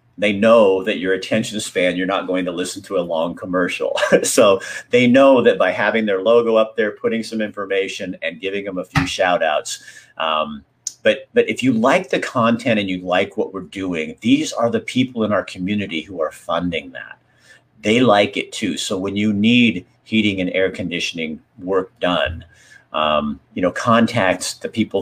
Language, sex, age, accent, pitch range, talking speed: English, male, 50-69, American, 95-120 Hz, 190 wpm